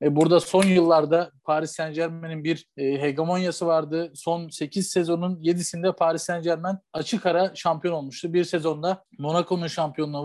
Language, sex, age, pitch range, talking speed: Turkish, male, 40-59, 160-185 Hz, 130 wpm